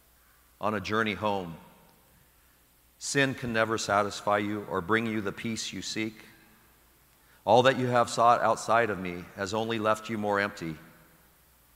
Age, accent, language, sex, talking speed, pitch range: 50-69, American, English, male, 155 wpm, 80-110 Hz